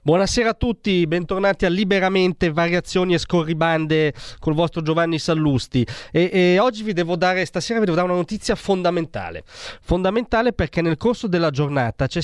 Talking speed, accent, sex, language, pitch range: 160 wpm, native, male, Italian, 130-180 Hz